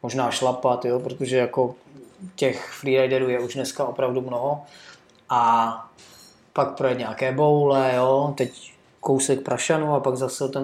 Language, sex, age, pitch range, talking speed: Czech, male, 20-39, 125-140 Hz, 140 wpm